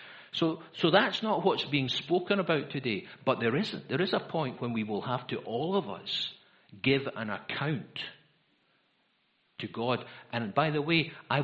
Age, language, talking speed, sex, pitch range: 60-79, English, 180 wpm, male, 135-170 Hz